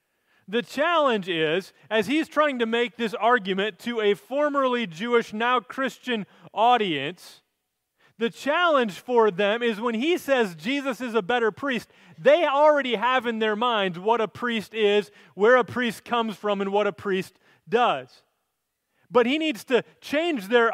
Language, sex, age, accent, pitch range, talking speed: English, male, 30-49, American, 185-240 Hz, 160 wpm